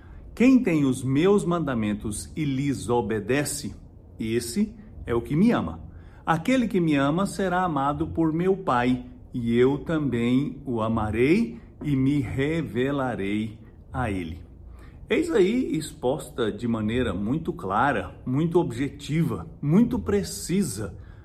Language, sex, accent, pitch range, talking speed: English, male, Brazilian, 110-160 Hz, 125 wpm